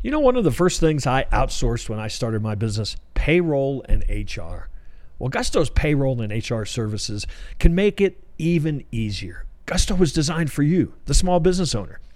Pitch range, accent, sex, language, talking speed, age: 110-160 Hz, American, male, English, 185 wpm, 50-69